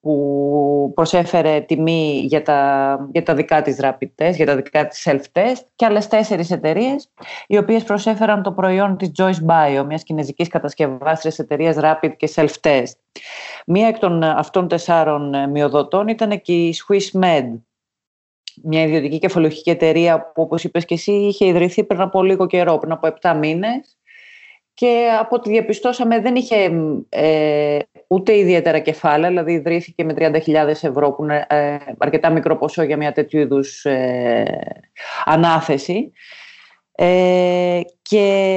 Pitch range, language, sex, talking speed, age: 155-205 Hz, Greek, female, 140 wpm, 30-49